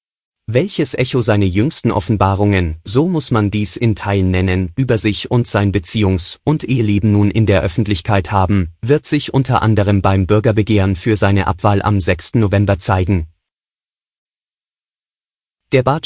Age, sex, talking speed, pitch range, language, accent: 30-49, male, 145 wpm, 100-125 Hz, German, German